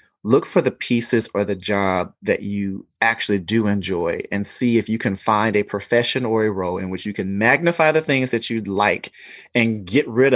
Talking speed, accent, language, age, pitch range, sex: 210 wpm, American, English, 30-49, 100-130 Hz, male